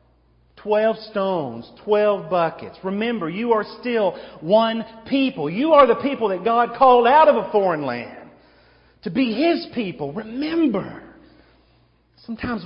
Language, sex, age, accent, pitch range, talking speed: English, male, 40-59, American, 140-210 Hz, 135 wpm